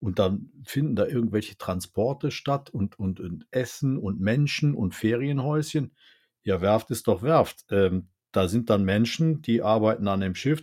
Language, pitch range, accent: German, 105-135 Hz, German